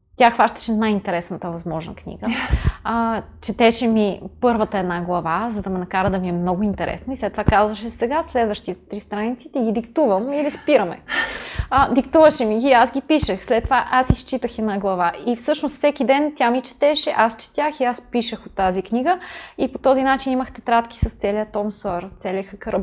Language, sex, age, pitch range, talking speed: Bulgarian, female, 20-39, 200-250 Hz, 190 wpm